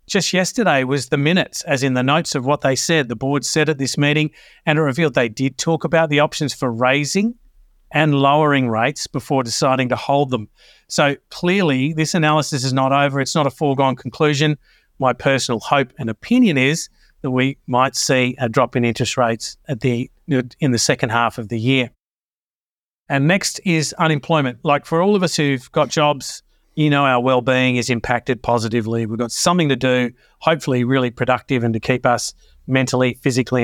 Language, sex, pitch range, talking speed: English, male, 130-160 Hz, 185 wpm